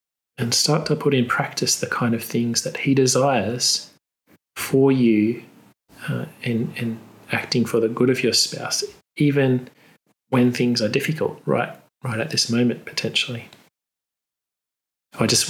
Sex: male